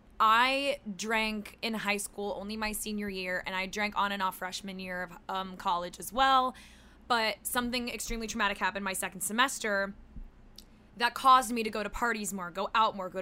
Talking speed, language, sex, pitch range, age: 190 wpm, English, female, 185-225 Hz, 20-39